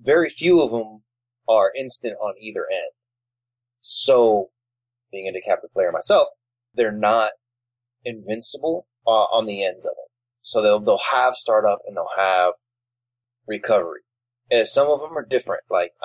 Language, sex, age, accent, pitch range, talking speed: English, male, 20-39, American, 115-155 Hz, 150 wpm